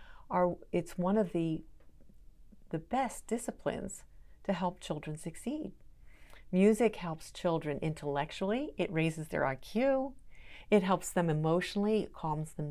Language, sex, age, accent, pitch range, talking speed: English, female, 50-69, American, 155-185 Hz, 125 wpm